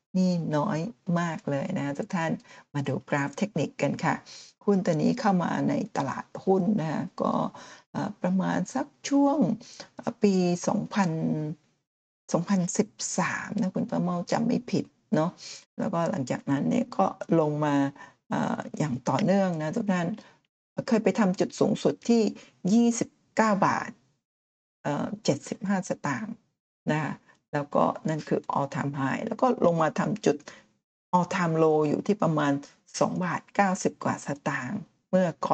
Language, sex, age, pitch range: Thai, female, 60-79, 165-220 Hz